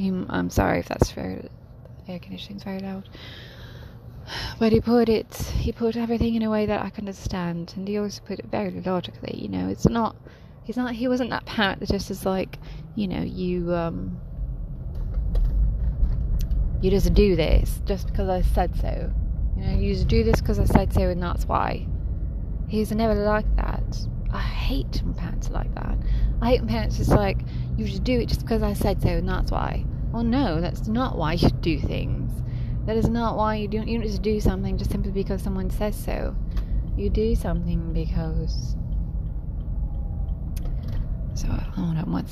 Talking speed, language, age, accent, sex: 185 wpm, English, 20-39, British, female